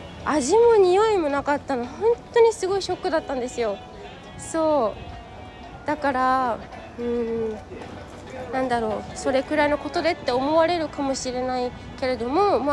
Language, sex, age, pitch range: Japanese, female, 20-39, 240-325 Hz